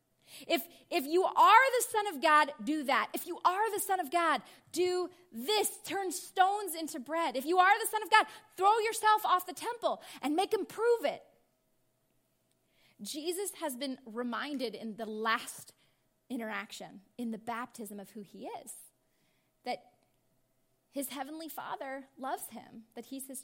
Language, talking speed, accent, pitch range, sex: English, 165 wpm, American, 255-380 Hz, female